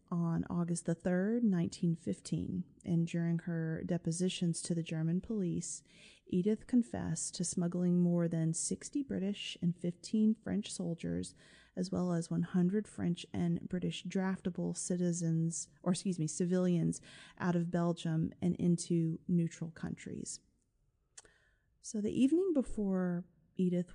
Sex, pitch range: female, 170-195 Hz